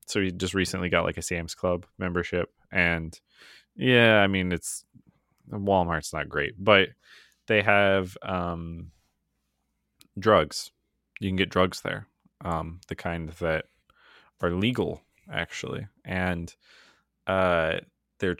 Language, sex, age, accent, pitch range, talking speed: English, male, 20-39, American, 85-100 Hz, 125 wpm